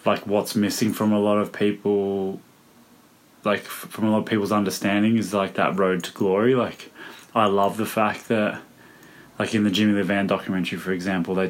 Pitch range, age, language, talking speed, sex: 90-105 Hz, 20-39, English, 190 wpm, male